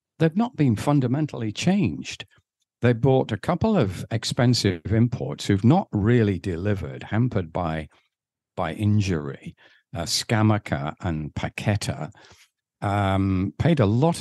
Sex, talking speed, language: male, 120 wpm, English